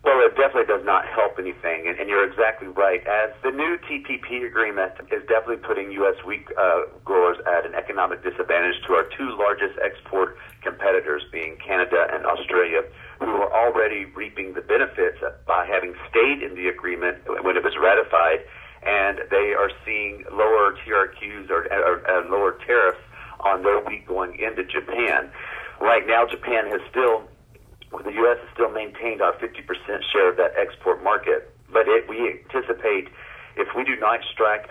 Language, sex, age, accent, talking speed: English, male, 40-59, American, 165 wpm